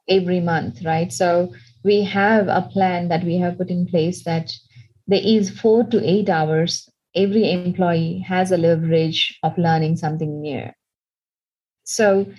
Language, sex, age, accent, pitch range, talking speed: English, female, 30-49, Indian, 165-200 Hz, 150 wpm